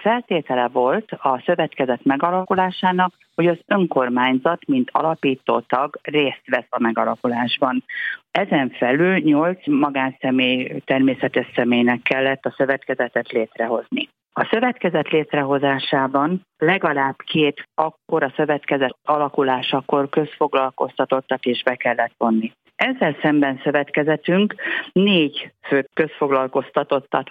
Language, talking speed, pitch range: Hungarian, 100 wpm, 130-160 Hz